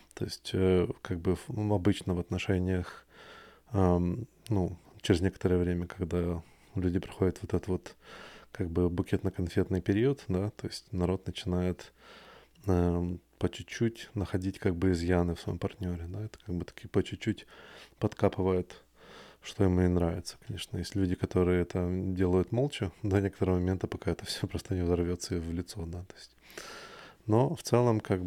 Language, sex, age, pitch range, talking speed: Russian, male, 20-39, 90-100 Hz, 155 wpm